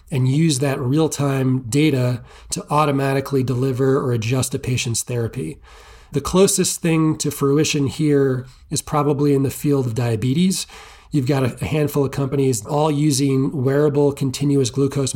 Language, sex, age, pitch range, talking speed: English, male, 30-49, 130-150 Hz, 145 wpm